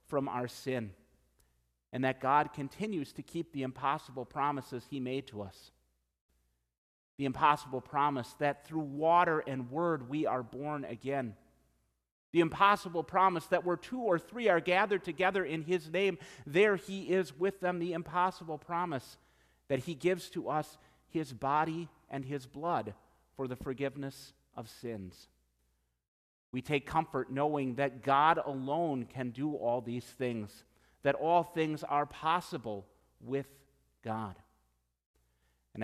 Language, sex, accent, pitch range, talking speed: English, male, American, 115-160 Hz, 140 wpm